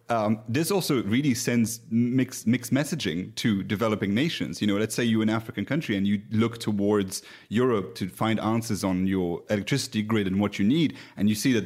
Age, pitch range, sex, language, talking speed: 30-49, 105-140 Hz, male, English, 200 wpm